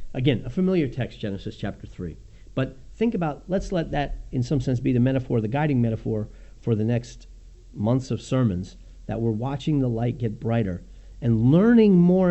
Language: English